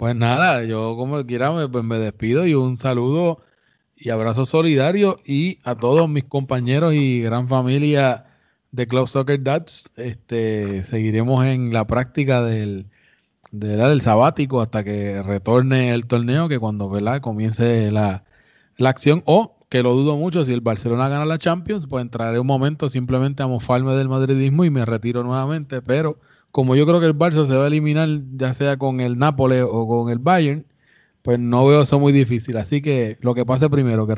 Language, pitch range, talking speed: Spanish, 120-140 Hz, 190 wpm